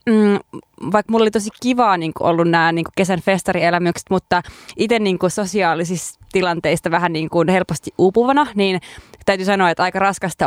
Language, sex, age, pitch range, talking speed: Finnish, female, 20-39, 175-215 Hz, 155 wpm